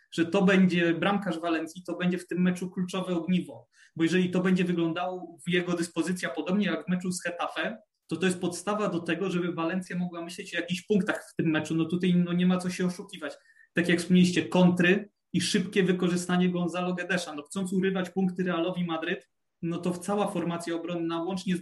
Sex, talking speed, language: male, 195 wpm, Polish